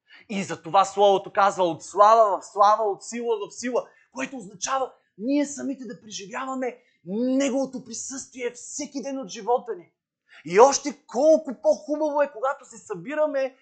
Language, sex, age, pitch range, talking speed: Bulgarian, male, 30-49, 180-240 Hz, 150 wpm